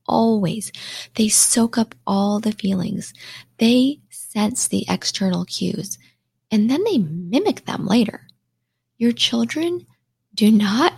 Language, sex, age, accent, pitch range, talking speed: English, female, 20-39, American, 175-245 Hz, 120 wpm